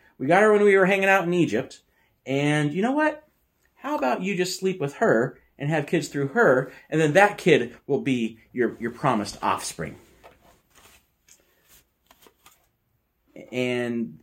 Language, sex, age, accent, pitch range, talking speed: English, male, 30-49, American, 115-175 Hz, 155 wpm